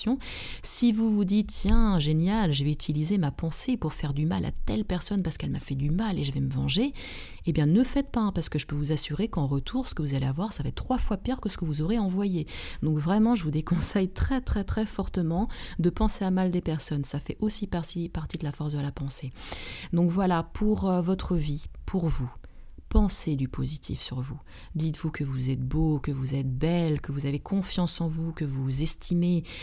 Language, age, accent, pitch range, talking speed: French, 30-49, French, 150-195 Hz, 230 wpm